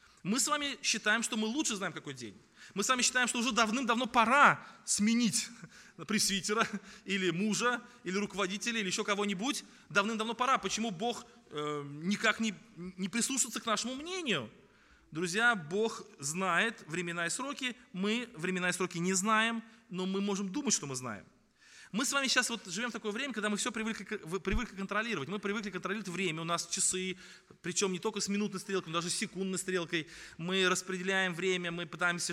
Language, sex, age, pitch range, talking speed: Russian, male, 20-39, 180-220 Hz, 175 wpm